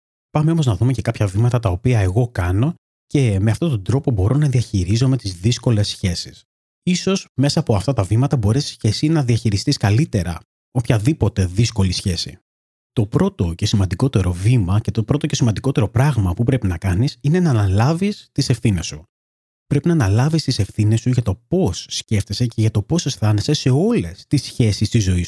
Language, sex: Greek, male